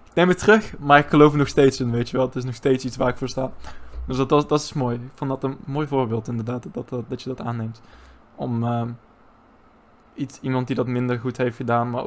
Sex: male